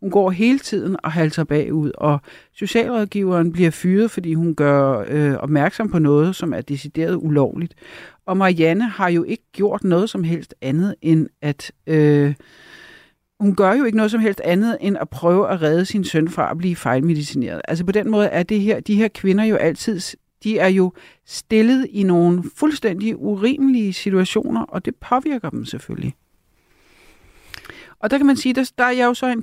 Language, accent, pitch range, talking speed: Danish, native, 165-220 Hz, 190 wpm